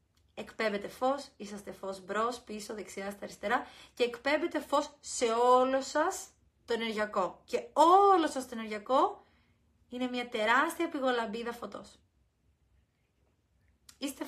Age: 30-49